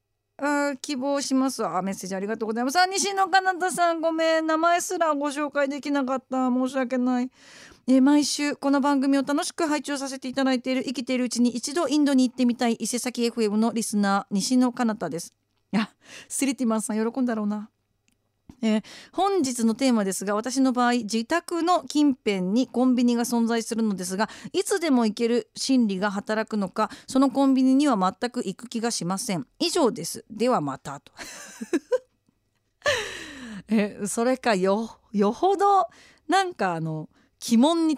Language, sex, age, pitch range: Japanese, female, 40-59, 190-280 Hz